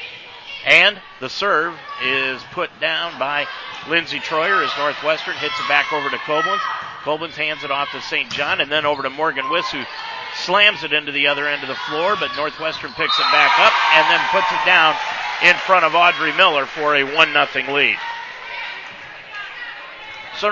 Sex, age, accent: male, 50-69, American